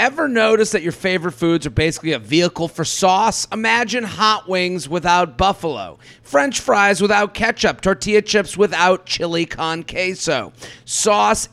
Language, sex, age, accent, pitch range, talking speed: English, male, 40-59, American, 150-200 Hz, 145 wpm